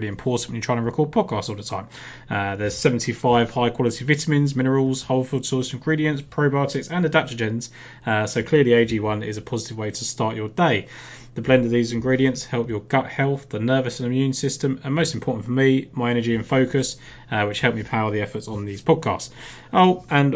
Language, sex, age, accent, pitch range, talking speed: English, male, 20-39, British, 115-135 Hz, 205 wpm